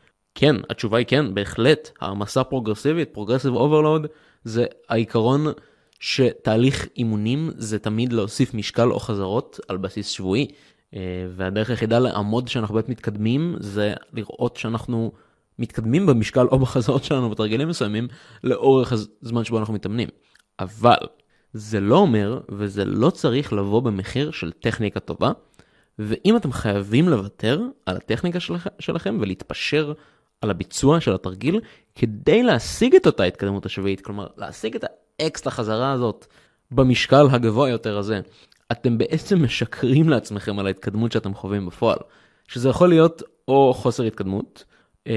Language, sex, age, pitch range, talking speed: Hebrew, male, 20-39, 105-145 Hz, 135 wpm